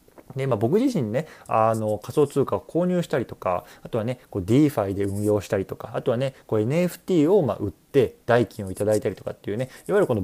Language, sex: Japanese, male